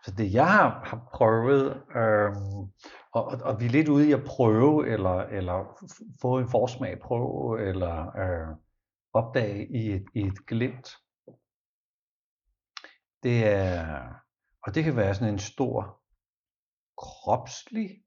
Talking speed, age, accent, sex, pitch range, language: 135 wpm, 60-79, native, male, 105-135 Hz, Danish